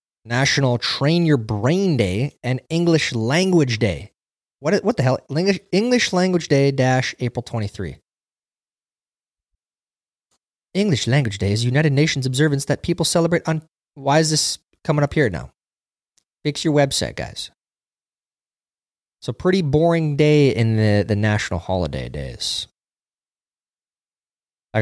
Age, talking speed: 20-39, 125 wpm